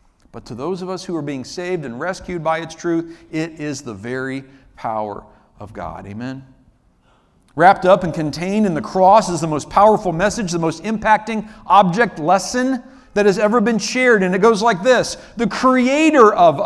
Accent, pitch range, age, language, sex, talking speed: American, 130-205 Hz, 50-69, English, male, 185 wpm